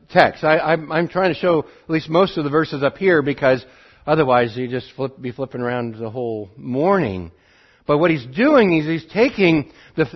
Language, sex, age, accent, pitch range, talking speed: English, male, 60-79, American, 130-195 Hz, 195 wpm